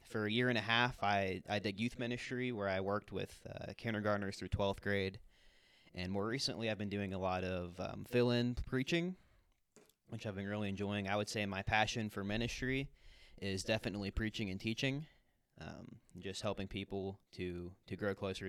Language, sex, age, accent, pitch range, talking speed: English, male, 20-39, American, 95-115 Hz, 185 wpm